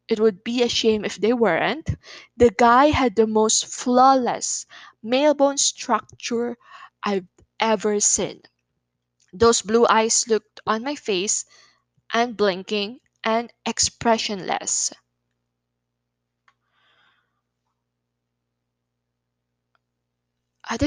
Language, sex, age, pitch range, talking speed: Filipino, female, 20-39, 195-250 Hz, 90 wpm